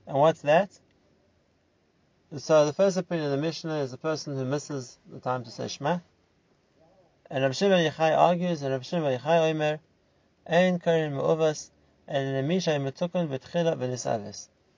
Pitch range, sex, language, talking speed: 135-170 Hz, male, English, 140 wpm